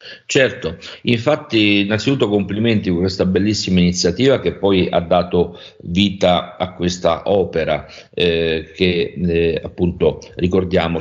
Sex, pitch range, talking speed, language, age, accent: male, 85-105 Hz, 115 wpm, Italian, 50-69, native